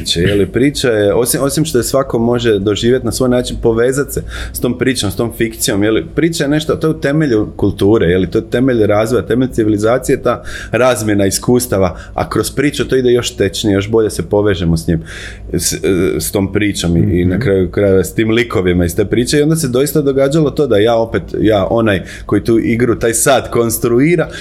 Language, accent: English, Croatian